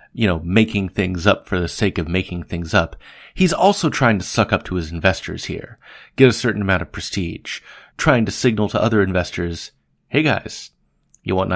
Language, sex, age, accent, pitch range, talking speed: English, male, 30-49, American, 90-120 Hz, 200 wpm